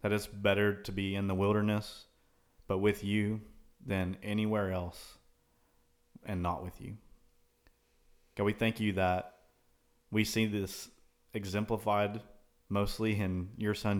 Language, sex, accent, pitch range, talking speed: English, male, American, 90-105 Hz, 135 wpm